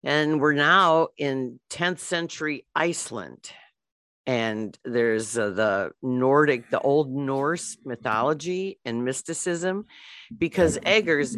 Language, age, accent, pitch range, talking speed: English, 50-69, American, 130-165 Hz, 105 wpm